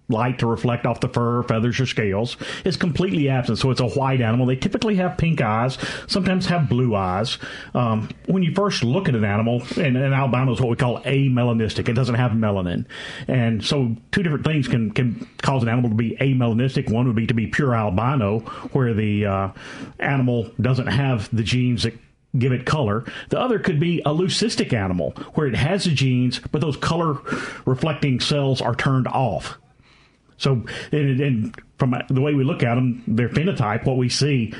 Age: 40-59